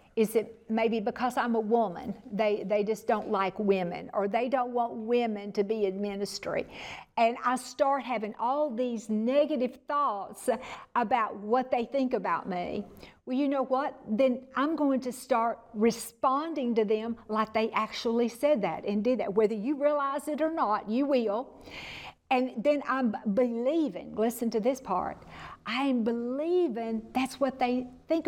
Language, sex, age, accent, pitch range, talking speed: English, female, 50-69, American, 210-270 Hz, 170 wpm